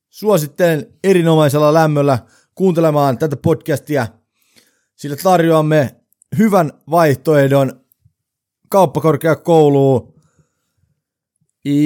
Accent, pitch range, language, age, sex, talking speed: native, 130-170 Hz, Finnish, 30-49, male, 55 wpm